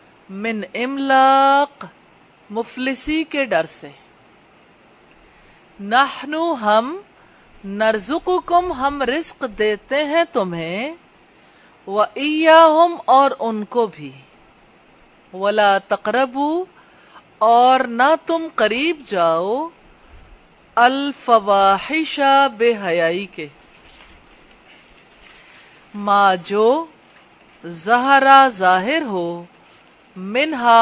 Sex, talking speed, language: female, 70 wpm, English